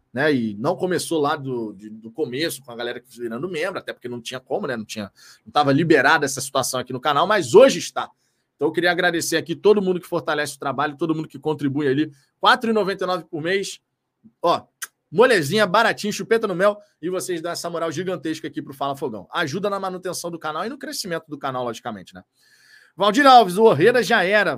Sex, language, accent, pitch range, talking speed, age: male, Portuguese, Brazilian, 140-210 Hz, 215 wpm, 20-39